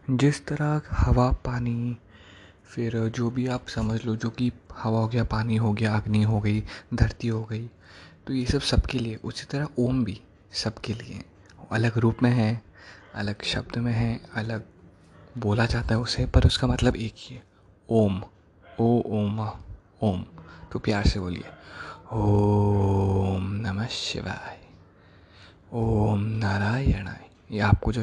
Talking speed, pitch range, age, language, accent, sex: 150 wpm, 100-130 Hz, 20-39, Hindi, native, male